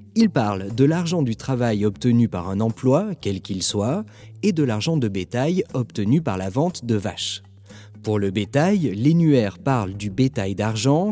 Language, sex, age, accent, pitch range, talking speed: French, male, 30-49, French, 110-150 Hz, 175 wpm